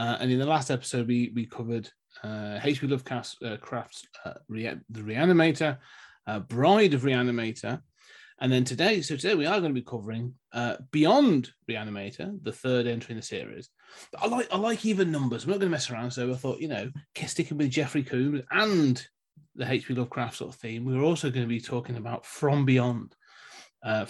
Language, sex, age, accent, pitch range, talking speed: English, male, 30-49, British, 120-150 Hz, 195 wpm